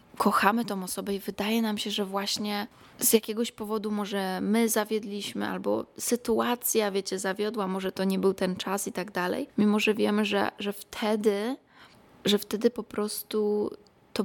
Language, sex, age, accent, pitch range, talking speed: Polish, female, 20-39, native, 195-225 Hz, 165 wpm